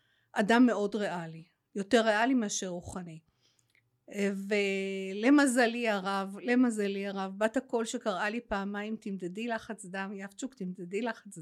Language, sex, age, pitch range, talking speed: Hebrew, female, 50-69, 185-245 Hz, 115 wpm